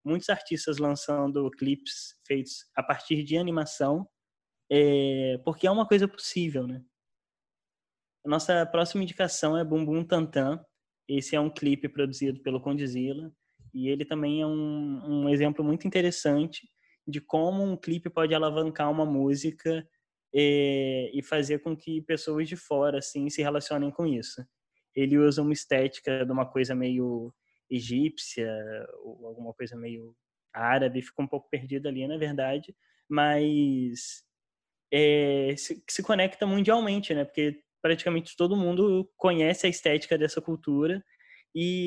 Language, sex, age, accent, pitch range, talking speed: Portuguese, male, 10-29, Brazilian, 140-170 Hz, 140 wpm